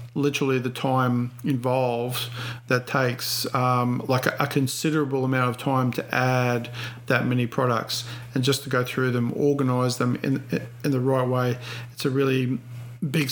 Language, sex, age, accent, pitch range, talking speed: English, male, 40-59, Australian, 125-140 Hz, 160 wpm